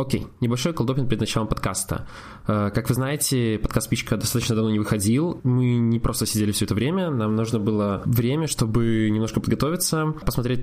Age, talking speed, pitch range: 20-39, 175 wpm, 105-125 Hz